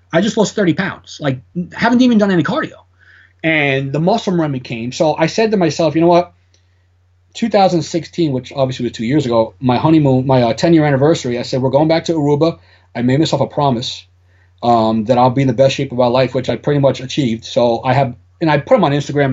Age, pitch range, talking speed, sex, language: 30-49, 120-165 Hz, 235 wpm, male, English